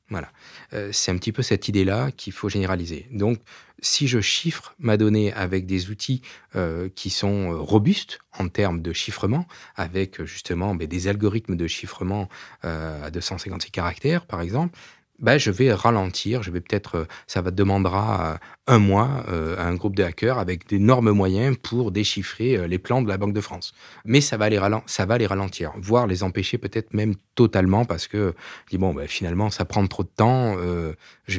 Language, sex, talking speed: French, male, 185 wpm